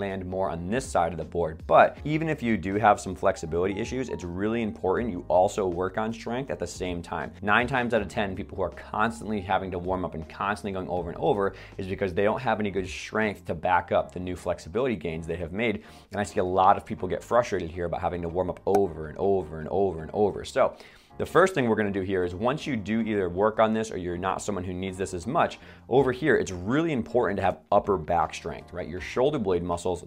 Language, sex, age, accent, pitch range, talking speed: English, male, 30-49, American, 90-105 Hz, 255 wpm